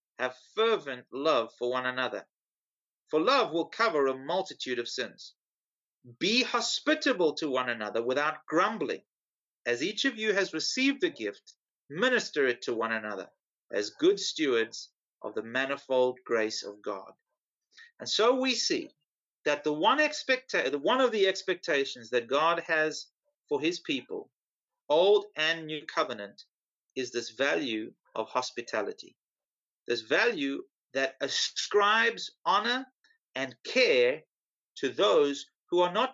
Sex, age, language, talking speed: male, 30-49, English, 135 wpm